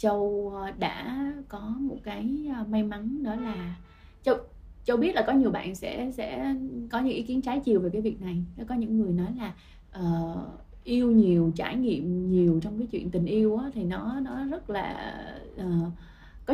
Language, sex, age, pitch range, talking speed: Vietnamese, female, 20-39, 180-235 Hz, 190 wpm